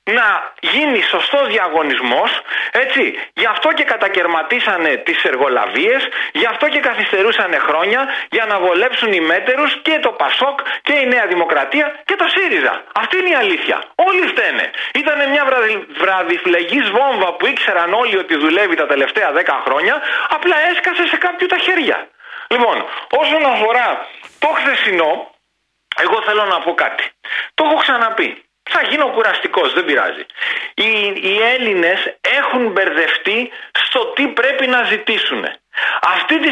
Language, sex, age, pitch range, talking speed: Greek, male, 40-59, 220-295 Hz, 140 wpm